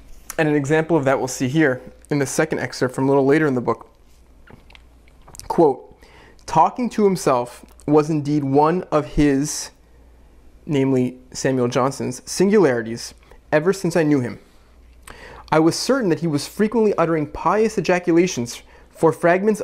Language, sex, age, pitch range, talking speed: English, male, 30-49, 125-175 Hz, 150 wpm